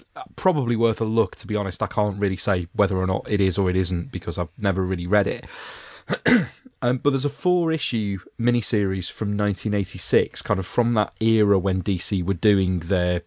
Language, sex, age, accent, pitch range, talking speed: English, male, 30-49, British, 95-115 Hz, 200 wpm